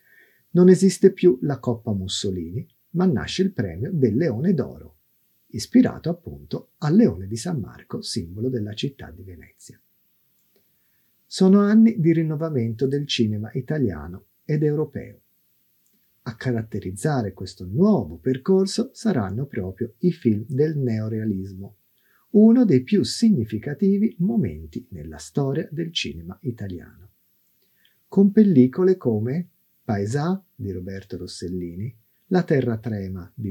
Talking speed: 120 wpm